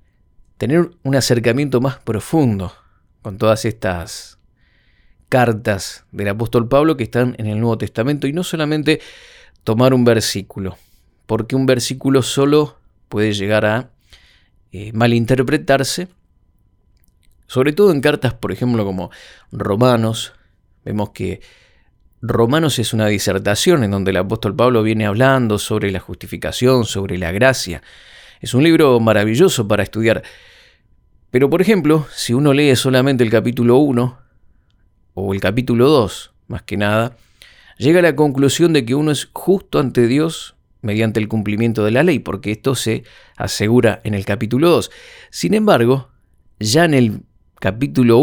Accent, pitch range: Argentinian, 105-135 Hz